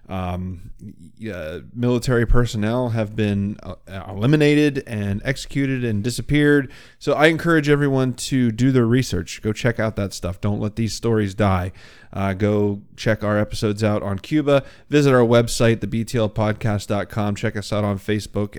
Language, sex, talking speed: English, male, 150 wpm